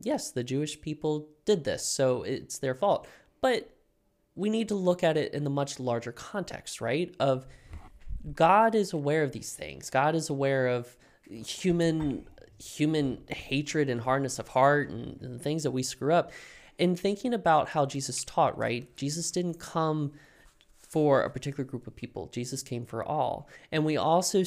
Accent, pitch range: American, 130-165 Hz